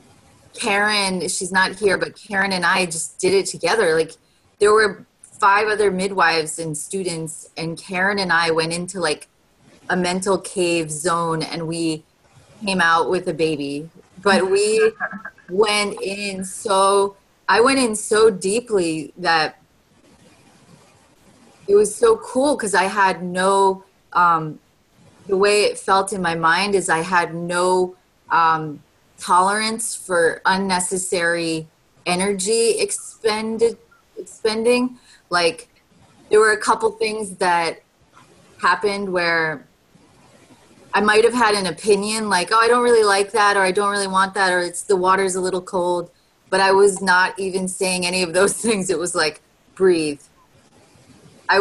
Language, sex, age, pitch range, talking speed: English, female, 30-49, 175-210 Hz, 145 wpm